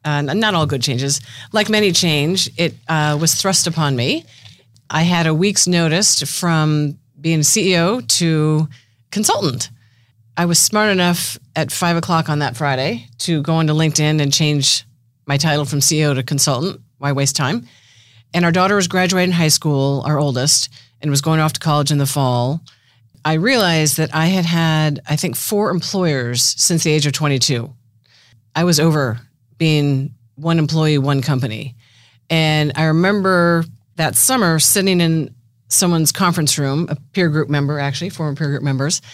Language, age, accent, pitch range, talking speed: English, 40-59, American, 135-170 Hz, 165 wpm